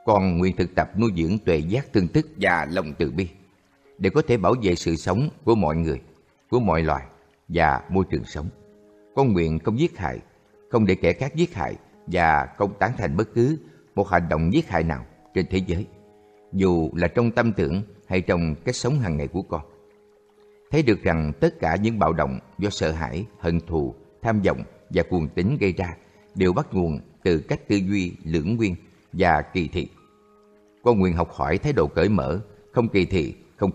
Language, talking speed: Vietnamese, 205 wpm